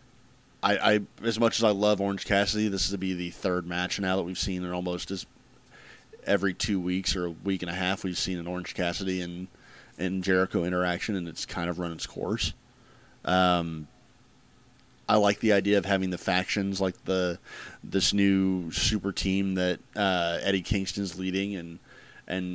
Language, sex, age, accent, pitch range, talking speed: English, male, 30-49, American, 90-100 Hz, 185 wpm